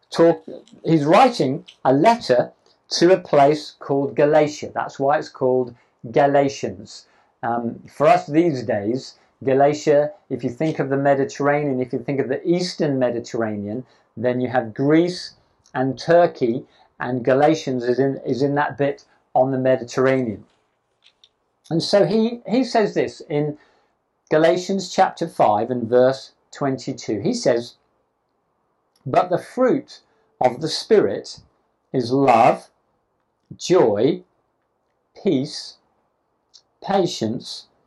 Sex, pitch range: male, 125-180 Hz